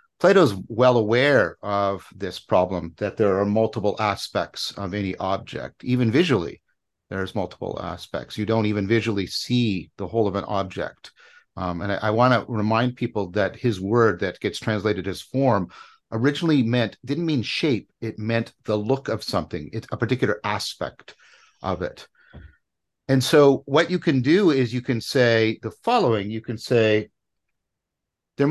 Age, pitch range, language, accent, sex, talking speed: 50-69, 105-130 Hz, English, American, male, 160 wpm